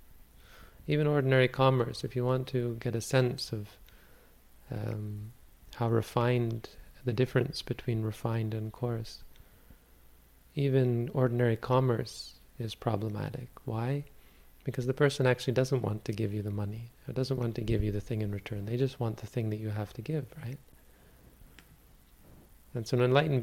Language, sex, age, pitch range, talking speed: English, male, 30-49, 105-125 Hz, 160 wpm